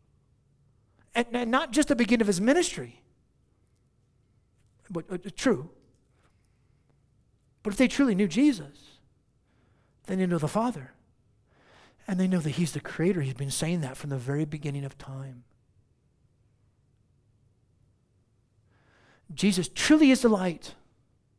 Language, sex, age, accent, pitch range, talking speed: English, male, 50-69, American, 125-200 Hz, 125 wpm